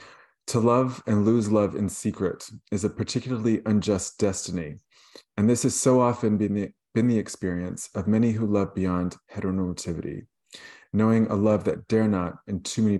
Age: 30-49